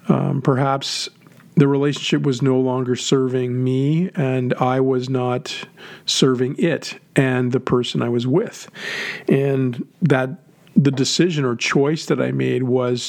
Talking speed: 140 wpm